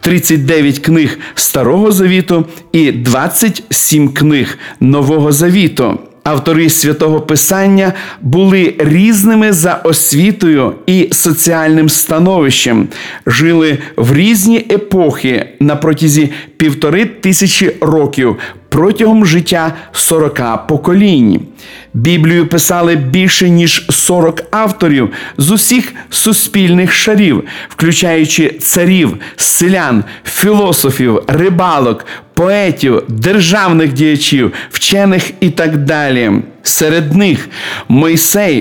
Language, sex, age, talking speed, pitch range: Russian, male, 50-69, 90 wpm, 150-185 Hz